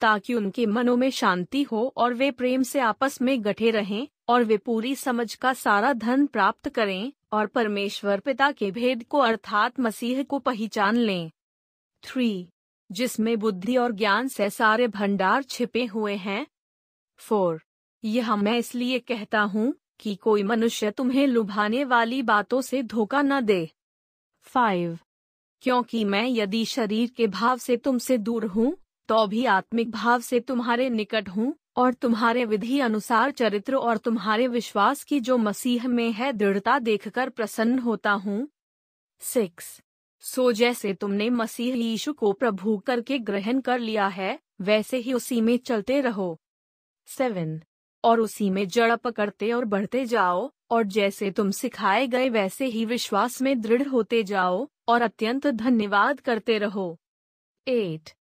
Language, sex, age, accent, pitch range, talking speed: Hindi, female, 30-49, native, 210-250 Hz, 150 wpm